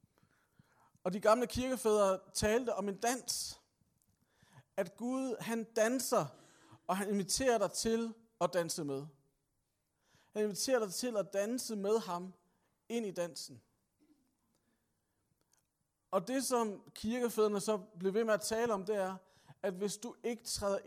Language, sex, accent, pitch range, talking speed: Danish, male, native, 165-215 Hz, 140 wpm